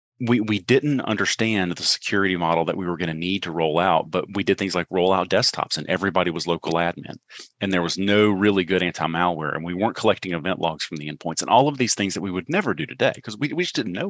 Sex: male